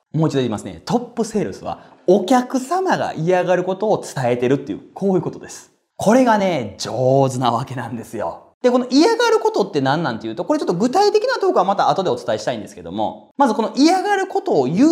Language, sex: Japanese, male